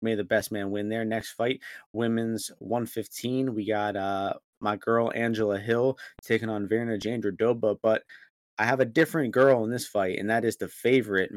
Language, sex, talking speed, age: English, male, 185 wpm, 20-39